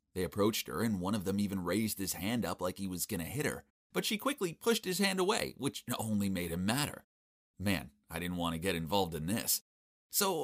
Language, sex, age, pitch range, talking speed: English, male, 30-49, 85-115 Hz, 235 wpm